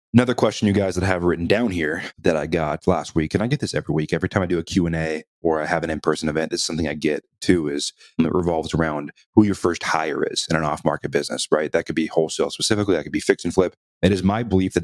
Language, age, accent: English, 30-49, American